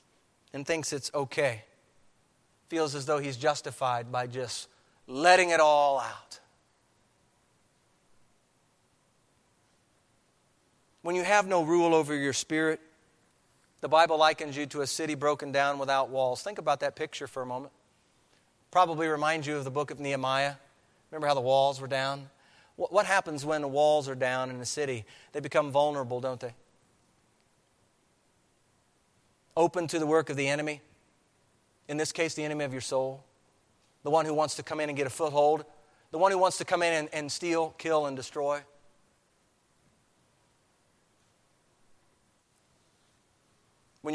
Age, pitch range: 40-59, 135-160 Hz